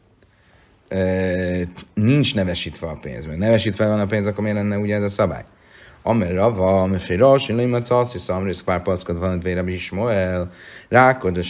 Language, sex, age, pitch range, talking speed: Hungarian, male, 30-49, 90-110 Hz, 165 wpm